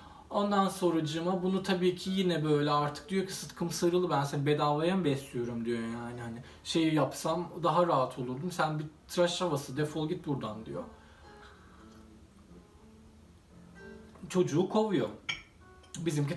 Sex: male